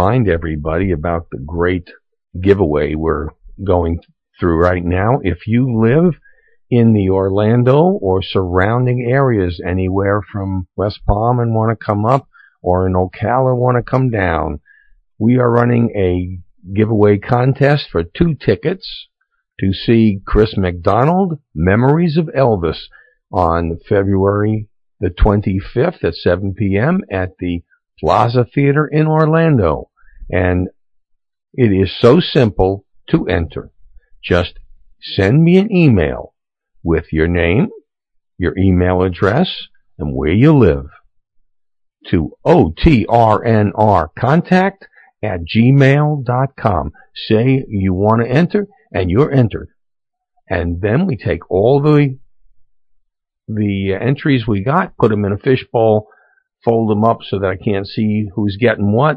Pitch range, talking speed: 90-135 Hz, 125 wpm